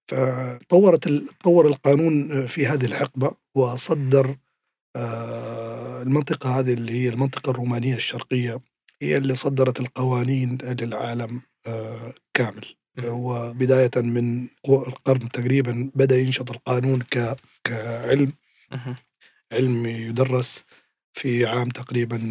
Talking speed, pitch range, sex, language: 85 wpm, 120-135 Hz, male, Arabic